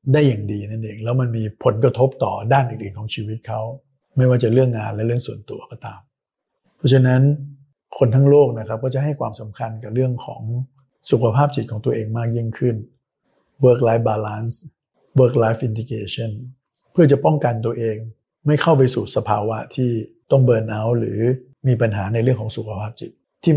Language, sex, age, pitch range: Thai, male, 60-79, 110-135 Hz